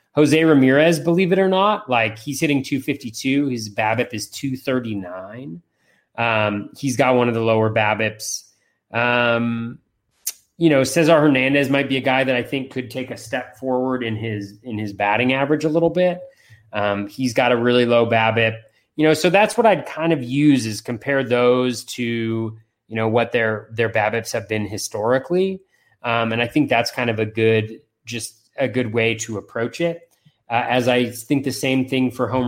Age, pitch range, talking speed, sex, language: 30-49, 110-130 Hz, 190 wpm, male, English